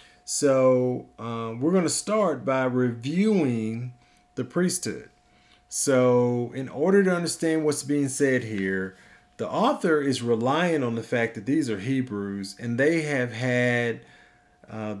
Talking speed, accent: 140 wpm, American